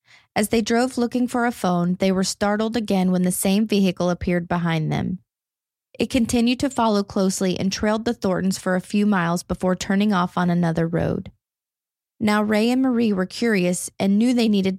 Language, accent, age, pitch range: English, American, 20-39, 185-220 Hz